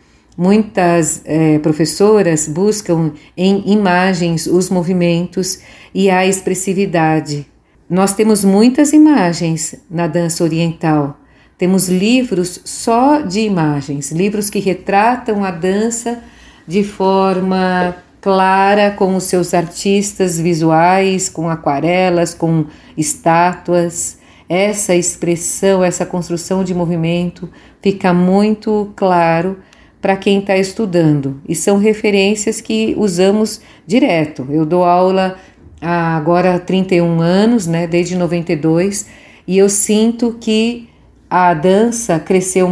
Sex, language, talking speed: female, Portuguese, 105 wpm